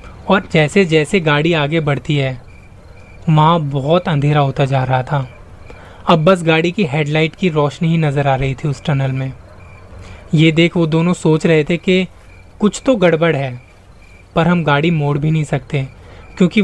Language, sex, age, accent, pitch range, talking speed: Hindi, male, 20-39, native, 125-180 Hz, 175 wpm